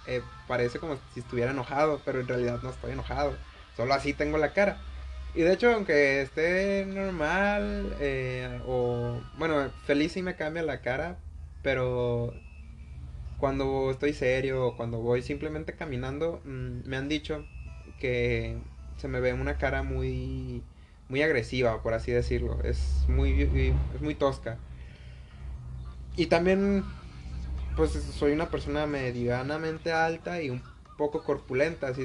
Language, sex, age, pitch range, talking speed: Spanish, male, 20-39, 115-145 Hz, 135 wpm